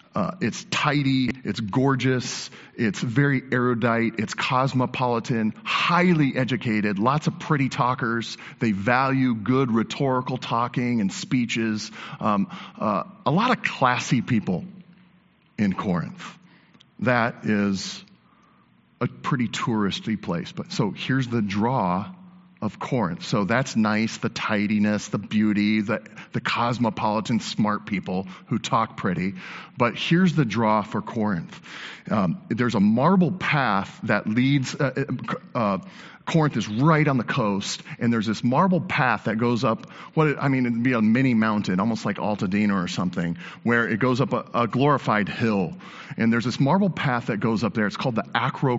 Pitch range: 110-150 Hz